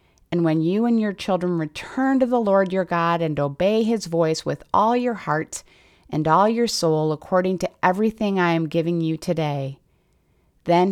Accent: American